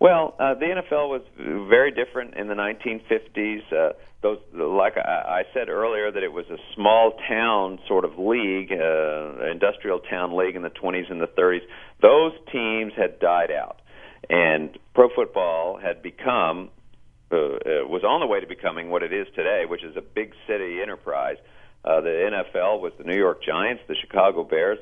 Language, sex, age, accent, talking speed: English, male, 50-69, American, 180 wpm